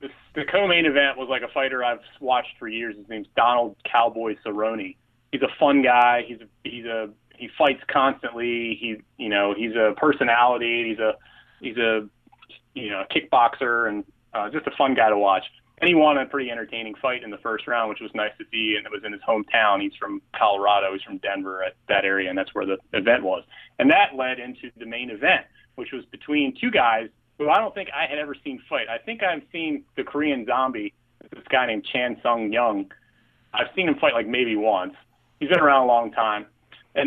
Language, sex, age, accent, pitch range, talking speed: English, male, 30-49, American, 115-145 Hz, 220 wpm